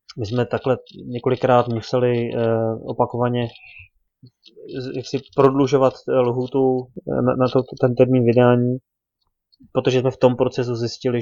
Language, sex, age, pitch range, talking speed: Slovak, male, 20-39, 115-125 Hz, 100 wpm